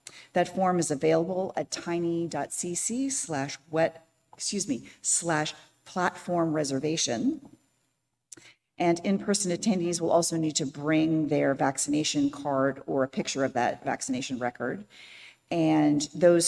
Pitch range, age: 140-185 Hz, 40-59